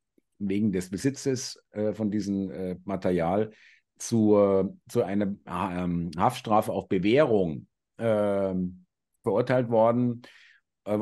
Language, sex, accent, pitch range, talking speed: German, male, German, 105-125 Hz, 115 wpm